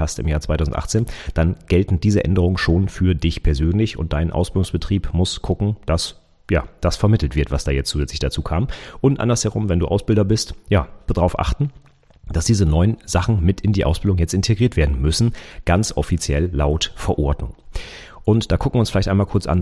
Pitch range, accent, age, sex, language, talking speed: 85-110 Hz, German, 40-59, male, German, 185 wpm